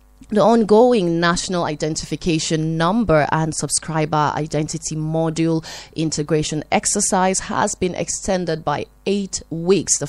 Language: English